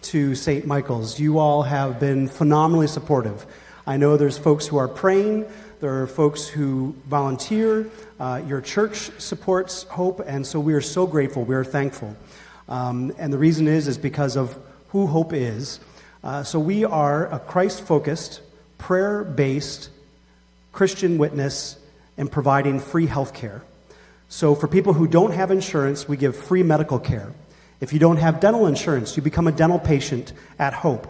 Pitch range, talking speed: 140-170 Hz, 160 wpm